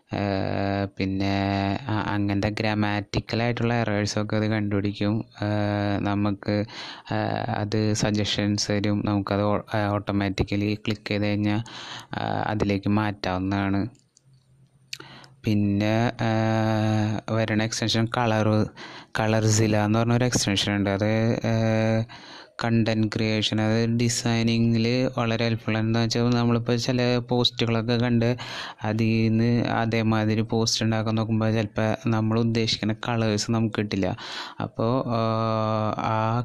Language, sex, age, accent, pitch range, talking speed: Malayalam, male, 20-39, native, 105-115 Hz, 85 wpm